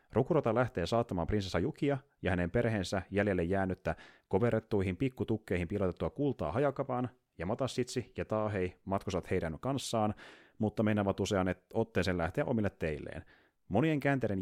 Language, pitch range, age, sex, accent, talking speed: Finnish, 90-125 Hz, 30-49, male, native, 130 wpm